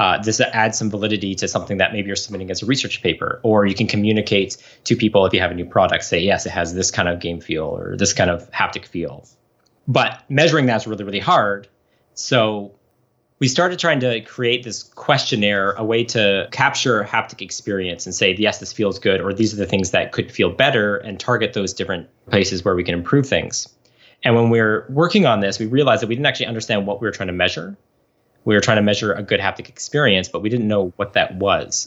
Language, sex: English, male